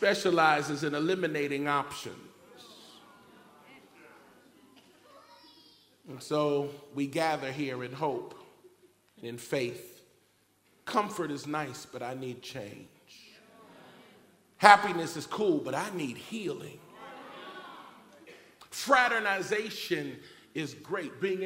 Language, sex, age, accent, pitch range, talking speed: English, male, 40-59, American, 130-175 Hz, 90 wpm